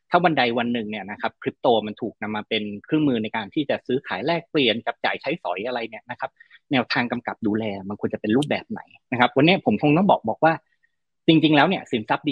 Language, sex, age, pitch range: Thai, male, 30-49, 120-165 Hz